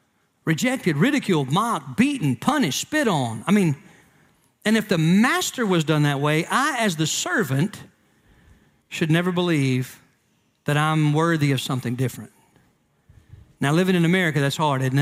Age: 50-69